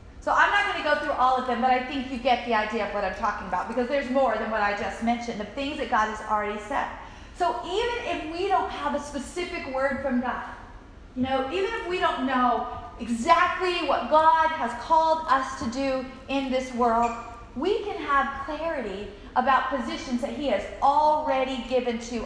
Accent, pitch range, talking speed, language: American, 230-275 Hz, 210 wpm, English